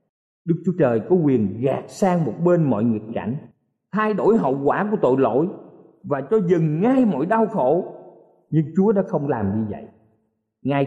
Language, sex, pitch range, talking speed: Vietnamese, male, 140-195 Hz, 190 wpm